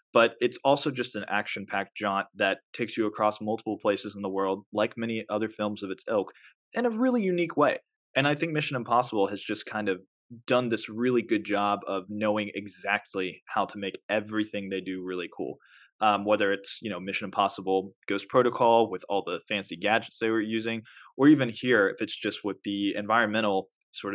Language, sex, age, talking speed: English, male, 20-39, 200 wpm